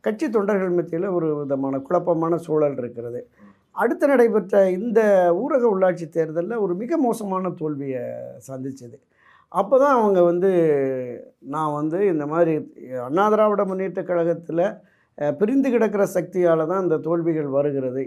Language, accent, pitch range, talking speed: Tamil, native, 150-210 Hz, 125 wpm